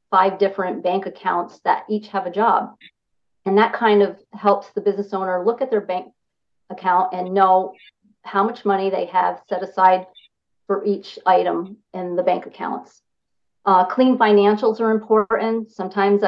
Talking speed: 160 wpm